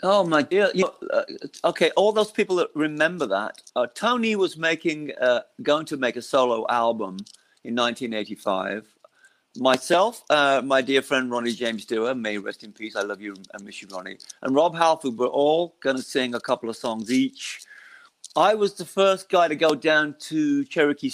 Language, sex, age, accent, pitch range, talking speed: English, male, 50-69, British, 125-185 Hz, 195 wpm